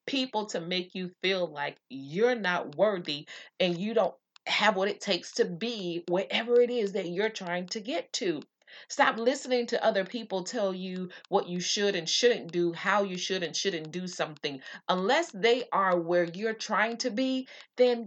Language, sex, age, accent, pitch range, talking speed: English, female, 30-49, American, 170-235 Hz, 185 wpm